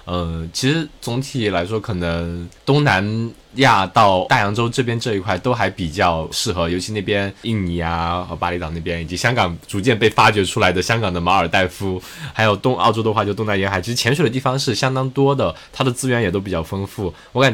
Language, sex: Chinese, male